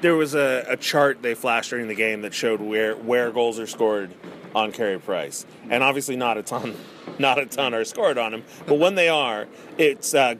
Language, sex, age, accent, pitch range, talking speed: English, male, 30-49, American, 110-145 Hz, 220 wpm